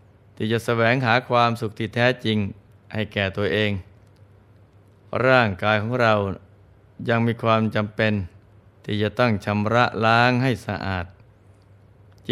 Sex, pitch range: male, 100-115 Hz